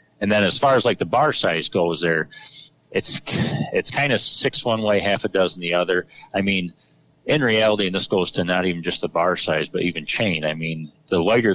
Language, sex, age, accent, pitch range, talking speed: English, male, 40-59, American, 90-110 Hz, 230 wpm